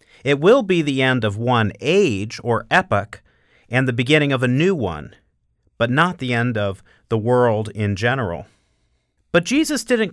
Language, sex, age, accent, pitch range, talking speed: English, male, 40-59, American, 110-145 Hz, 170 wpm